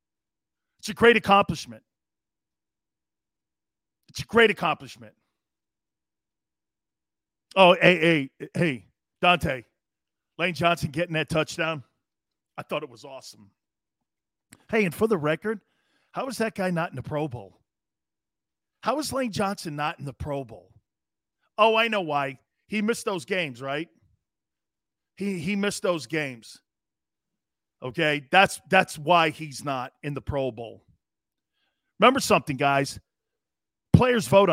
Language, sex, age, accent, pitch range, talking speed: English, male, 40-59, American, 140-200 Hz, 130 wpm